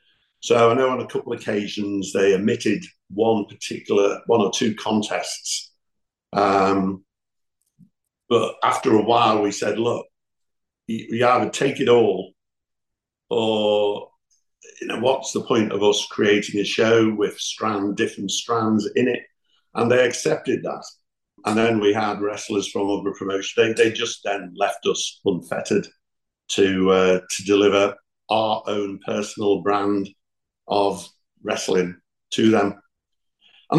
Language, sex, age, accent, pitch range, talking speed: English, male, 50-69, British, 100-110 Hz, 140 wpm